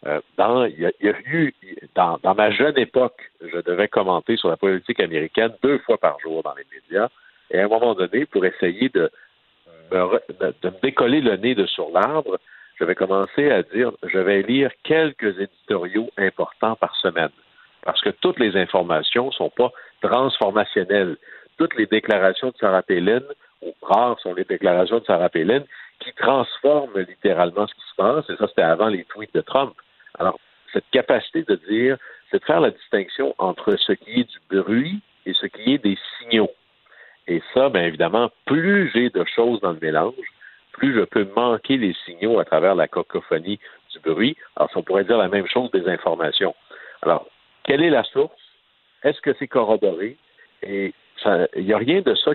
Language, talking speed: French, 190 wpm